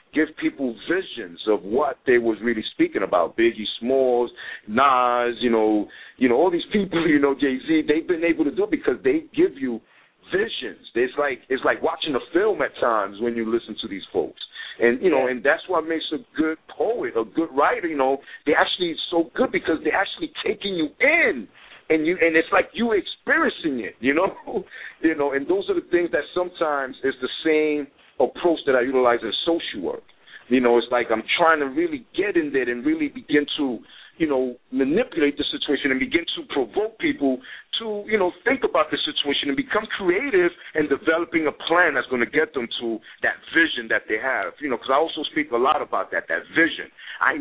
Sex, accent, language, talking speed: male, American, English, 215 wpm